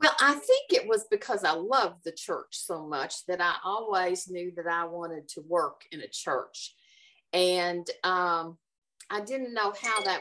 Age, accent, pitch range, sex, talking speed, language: 50-69, American, 165-255 Hz, female, 180 wpm, English